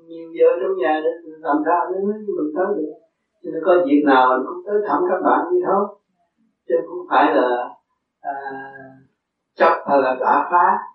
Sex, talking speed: male, 195 wpm